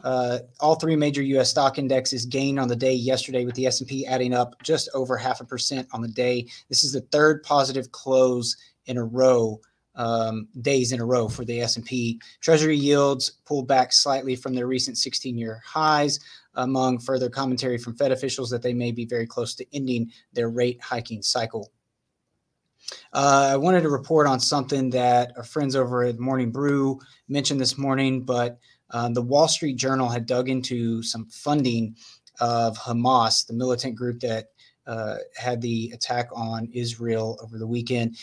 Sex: male